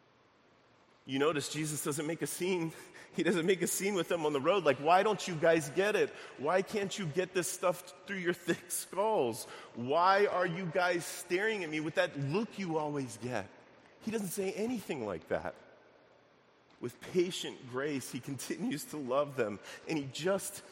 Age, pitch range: 30-49, 125-180 Hz